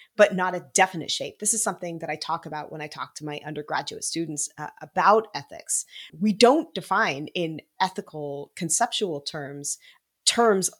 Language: English